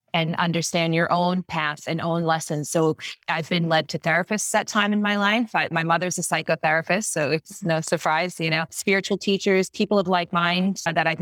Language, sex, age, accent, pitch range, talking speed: English, female, 30-49, American, 155-185 Hz, 200 wpm